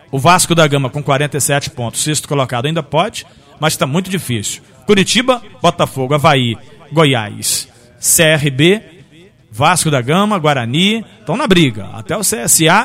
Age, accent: 40-59, Brazilian